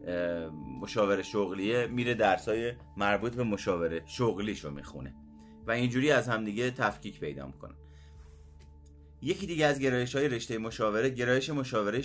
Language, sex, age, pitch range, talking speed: Persian, male, 30-49, 100-130 Hz, 130 wpm